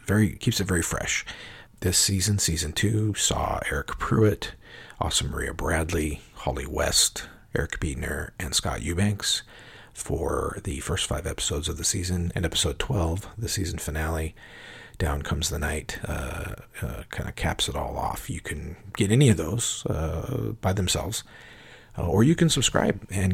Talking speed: 160 wpm